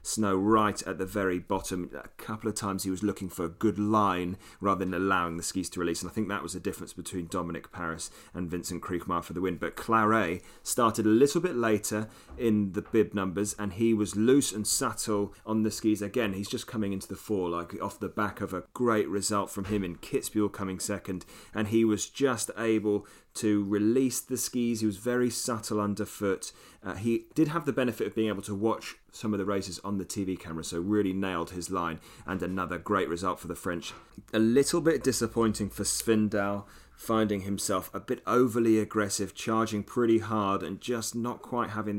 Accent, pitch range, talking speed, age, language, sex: British, 95-110 Hz, 210 wpm, 30-49, English, male